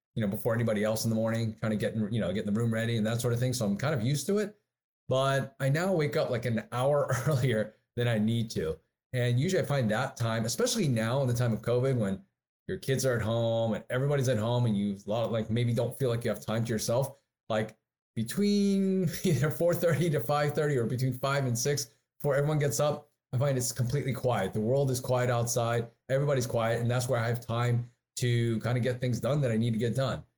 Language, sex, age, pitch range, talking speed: English, male, 30-49, 110-135 Hz, 245 wpm